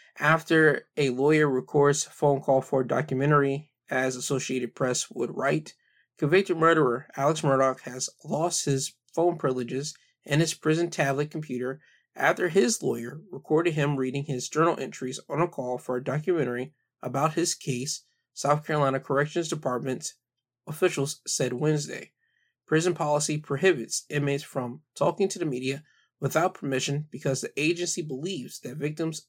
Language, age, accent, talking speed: English, 20-39, American, 145 wpm